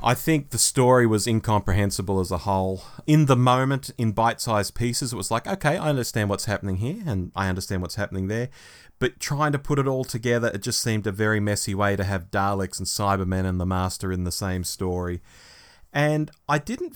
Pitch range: 100-145 Hz